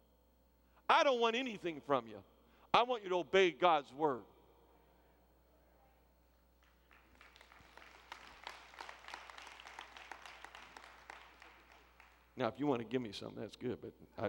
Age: 50-69